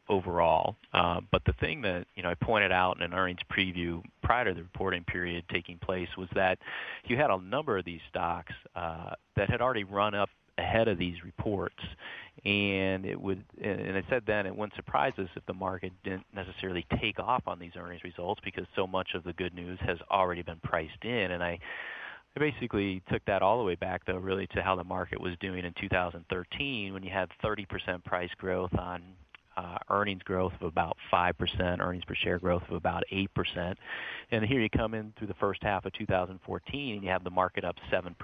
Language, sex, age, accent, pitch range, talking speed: English, male, 40-59, American, 90-105 Hz, 210 wpm